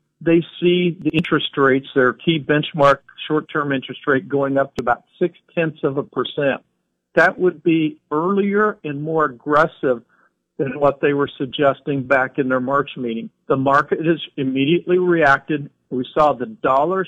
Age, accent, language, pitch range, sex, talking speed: 50-69, American, English, 135-165 Hz, male, 160 wpm